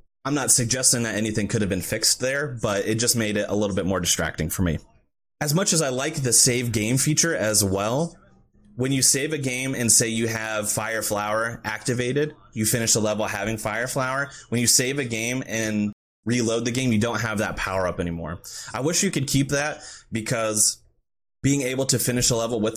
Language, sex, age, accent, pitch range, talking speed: English, male, 20-39, American, 105-130 Hz, 215 wpm